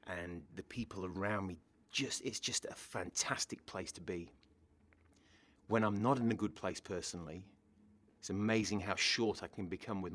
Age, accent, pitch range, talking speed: 30-49, British, 90-110 Hz, 170 wpm